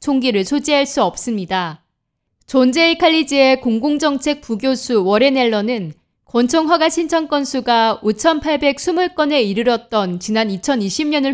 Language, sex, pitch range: Korean, female, 215-290 Hz